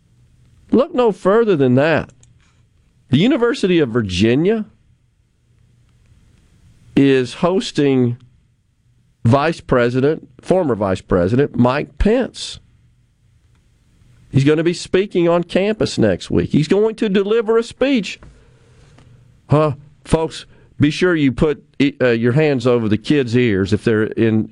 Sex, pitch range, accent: male, 115-160 Hz, American